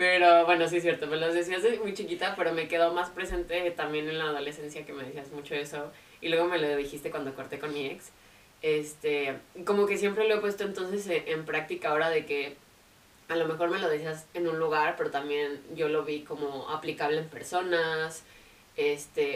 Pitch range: 145-170 Hz